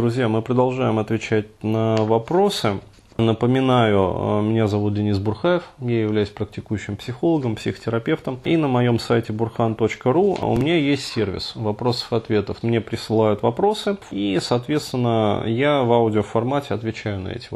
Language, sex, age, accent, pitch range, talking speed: Russian, male, 30-49, native, 105-130 Hz, 125 wpm